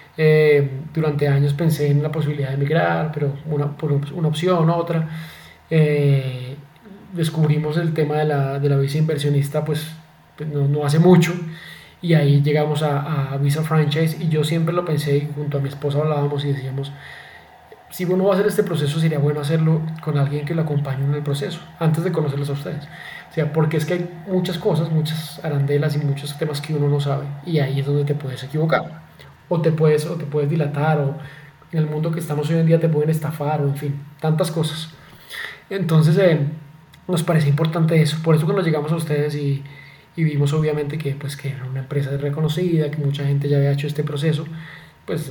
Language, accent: Spanish, Colombian